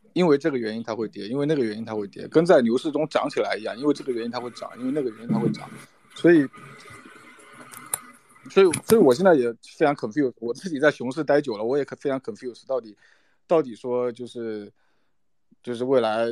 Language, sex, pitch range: Chinese, male, 115-150 Hz